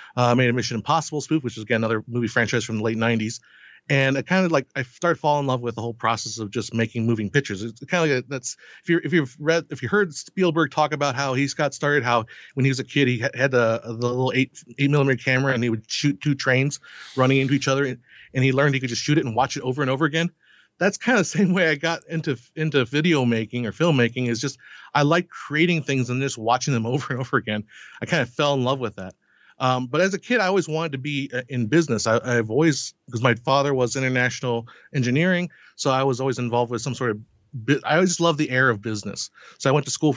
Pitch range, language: 120-155 Hz, English